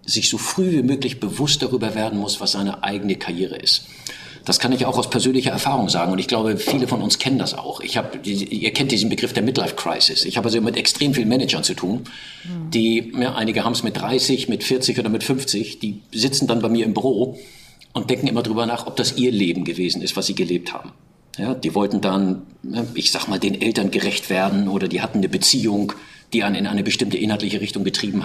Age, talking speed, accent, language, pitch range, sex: 50-69, 225 wpm, German, German, 110-140 Hz, male